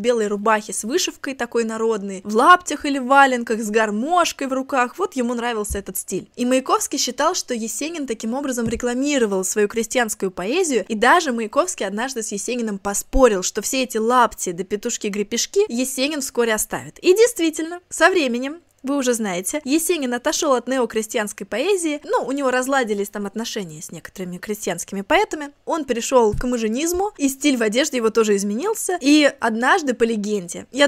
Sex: female